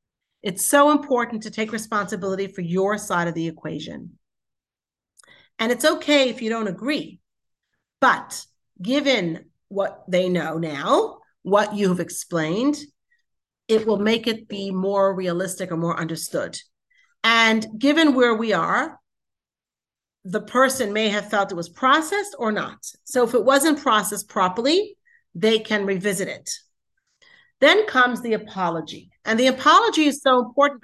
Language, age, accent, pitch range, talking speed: English, 40-59, American, 195-265 Hz, 140 wpm